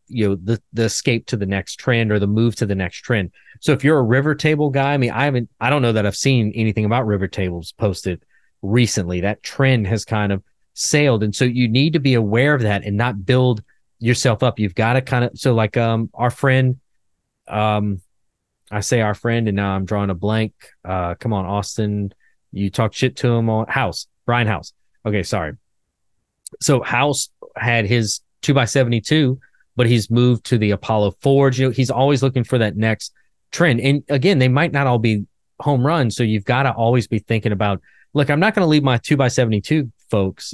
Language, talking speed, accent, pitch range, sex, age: English, 215 wpm, American, 105-130 Hz, male, 30-49